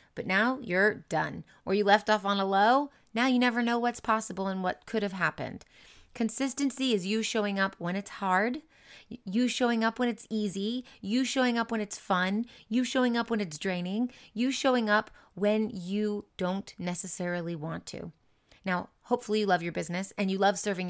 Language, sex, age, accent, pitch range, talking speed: English, female, 30-49, American, 180-225 Hz, 190 wpm